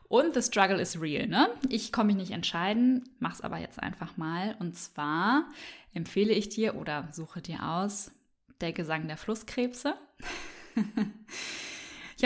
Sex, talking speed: female, 145 wpm